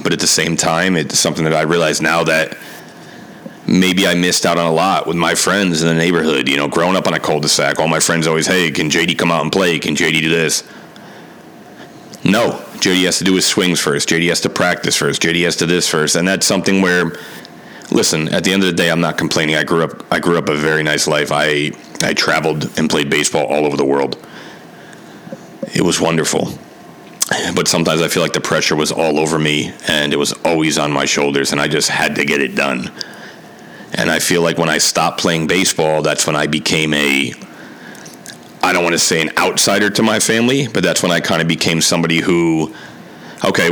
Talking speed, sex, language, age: 225 wpm, male, English, 30-49